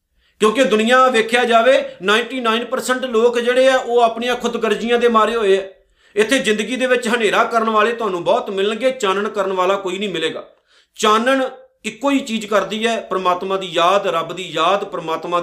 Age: 50-69